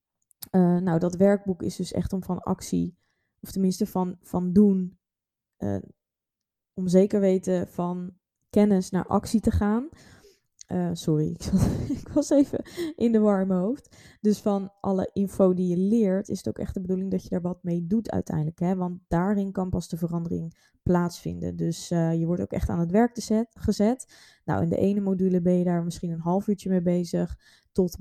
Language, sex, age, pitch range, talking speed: Dutch, female, 20-39, 175-200 Hz, 190 wpm